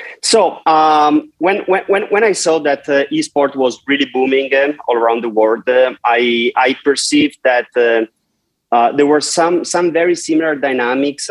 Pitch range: 115-145 Hz